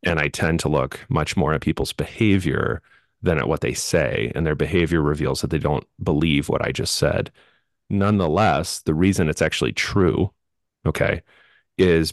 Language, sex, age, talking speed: English, male, 30-49, 175 wpm